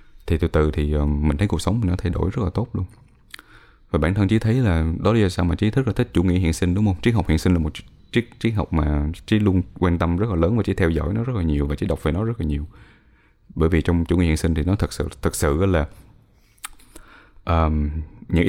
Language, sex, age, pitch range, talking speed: Vietnamese, male, 20-39, 80-105 Hz, 285 wpm